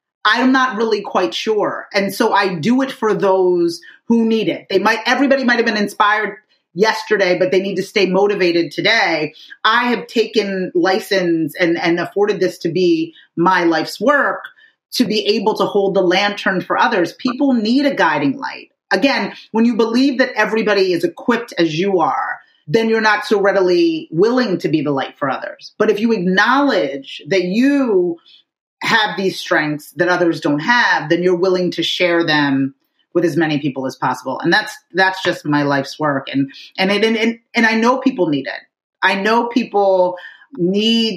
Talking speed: 185 wpm